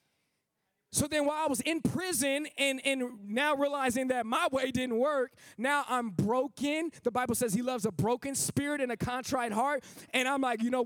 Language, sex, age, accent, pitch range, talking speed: English, male, 20-39, American, 230-285 Hz, 200 wpm